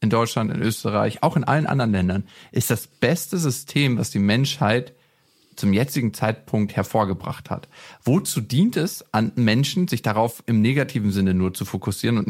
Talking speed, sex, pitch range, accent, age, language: 170 wpm, male, 110-145 Hz, German, 40-59, German